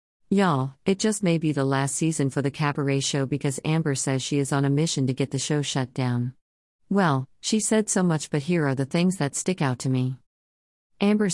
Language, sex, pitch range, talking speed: English, female, 135-155 Hz, 220 wpm